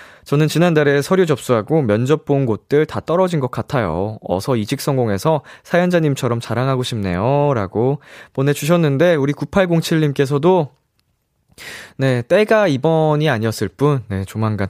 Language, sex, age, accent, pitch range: Korean, male, 20-39, native, 110-170 Hz